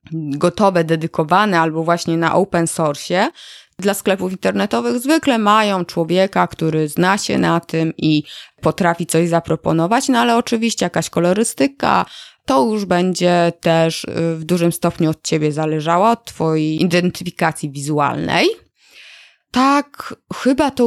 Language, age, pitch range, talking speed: Polish, 20-39, 165-225 Hz, 125 wpm